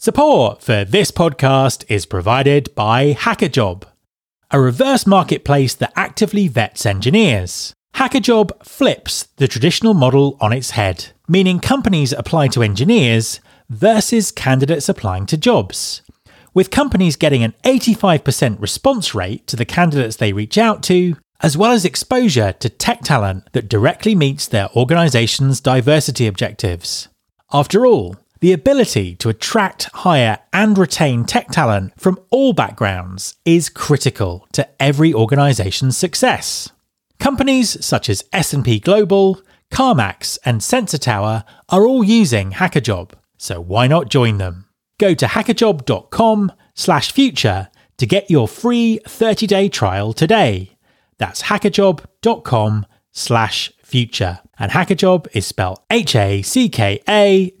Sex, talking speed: male, 120 wpm